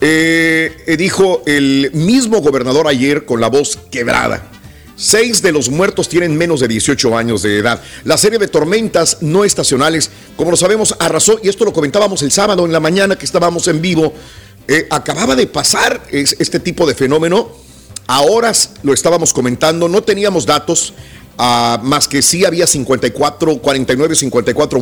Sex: male